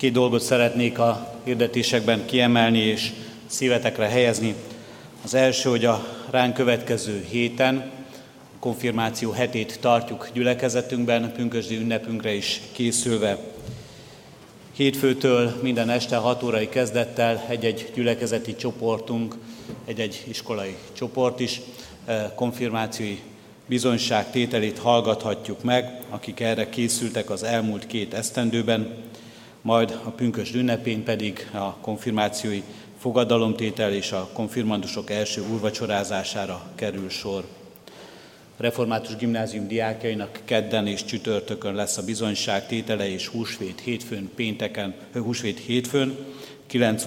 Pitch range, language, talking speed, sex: 105-120 Hz, Hungarian, 105 wpm, male